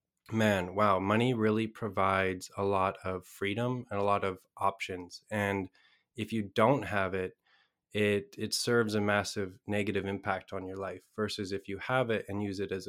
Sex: male